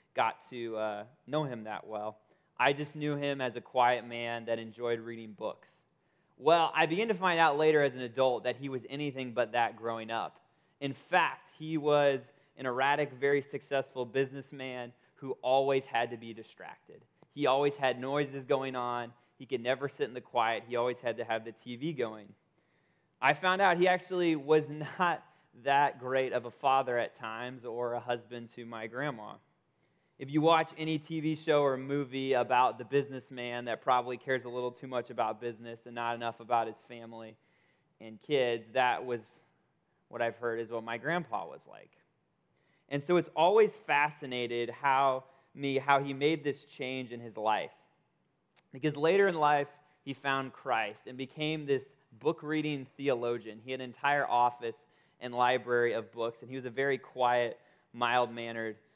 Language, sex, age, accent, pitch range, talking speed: English, male, 20-39, American, 120-145 Hz, 180 wpm